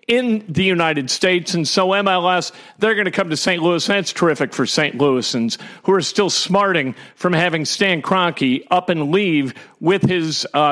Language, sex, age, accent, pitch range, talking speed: English, male, 50-69, American, 155-195 Hz, 185 wpm